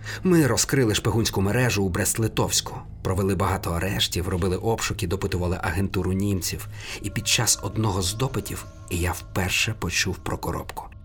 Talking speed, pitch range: 135 wpm, 95-120 Hz